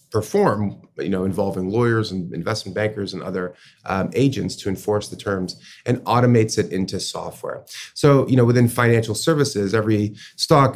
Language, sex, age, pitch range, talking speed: English, male, 30-49, 100-130 Hz, 160 wpm